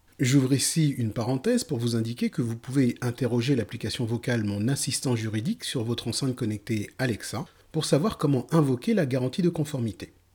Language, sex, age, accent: French, male, 40-59, French